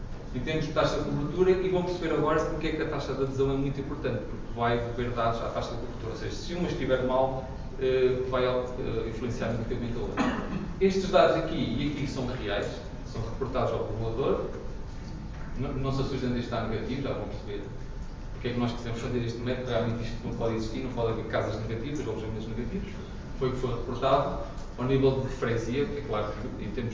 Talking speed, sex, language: 215 wpm, male, English